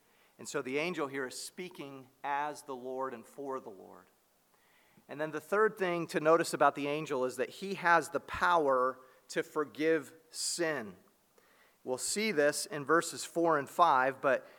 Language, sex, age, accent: English, male, 40-59, American